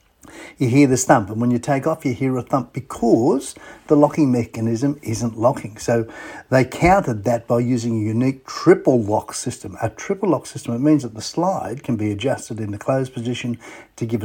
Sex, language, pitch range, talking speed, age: male, English, 120-150 Hz, 200 wpm, 50-69